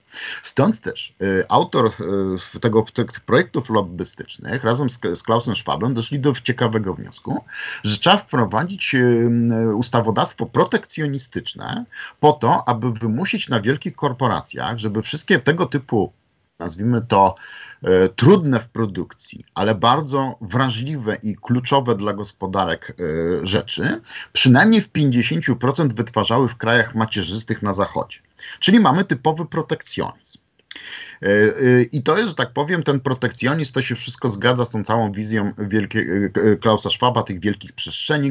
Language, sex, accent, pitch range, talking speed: Polish, male, native, 110-135 Hz, 120 wpm